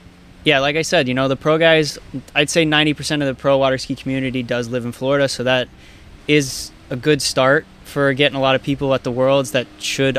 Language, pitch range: English, 110-135 Hz